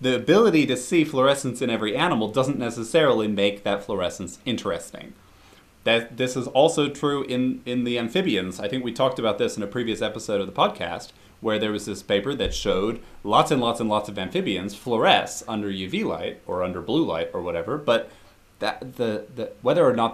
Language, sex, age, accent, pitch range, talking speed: English, male, 30-49, American, 105-140 Hz, 200 wpm